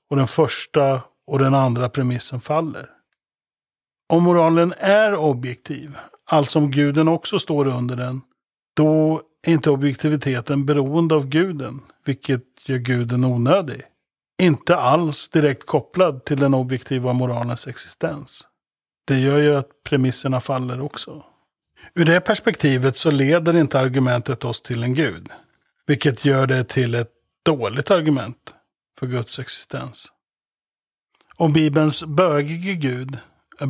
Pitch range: 130-160 Hz